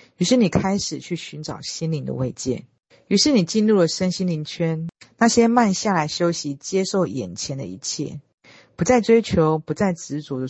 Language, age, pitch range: Chinese, 40-59, 140-195 Hz